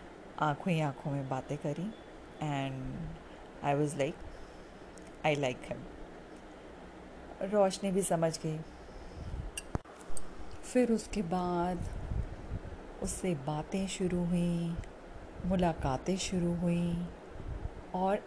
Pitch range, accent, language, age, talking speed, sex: 150-185 Hz, native, Hindi, 40-59, 90 wpm, female